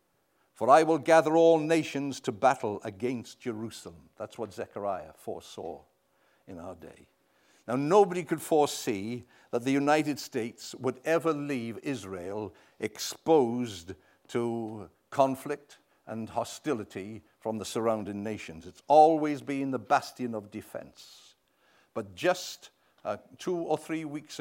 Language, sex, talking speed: English, male, 130 wpm